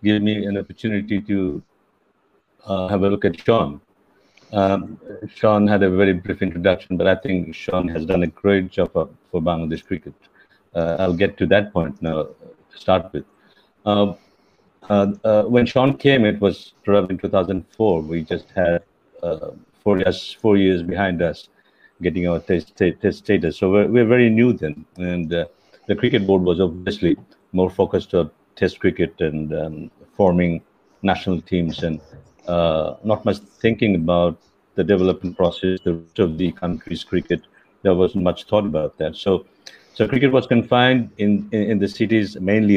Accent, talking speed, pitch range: native, 170 wpm, 85-105 Hz